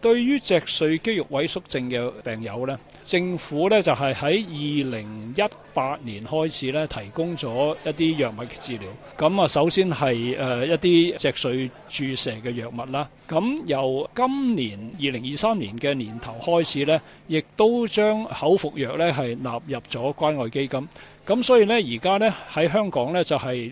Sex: male